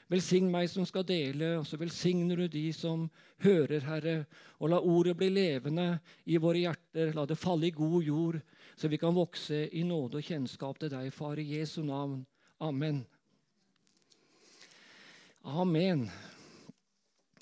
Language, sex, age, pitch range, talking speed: English, male, 50-69, 160-200 Hz, 150 wpm